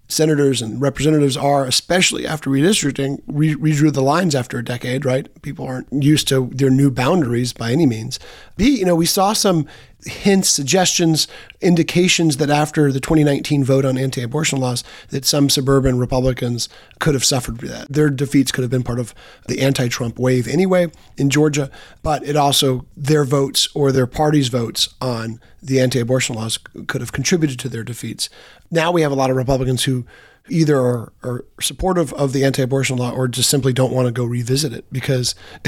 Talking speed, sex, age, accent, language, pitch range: 180 wpm, male, 30-49, American, English, 125-150 Hz